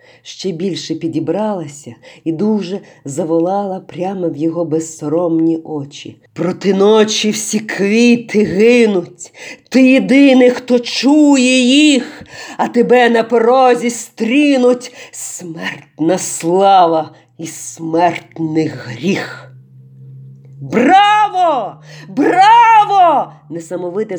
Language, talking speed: Ukrainian, 85 wpm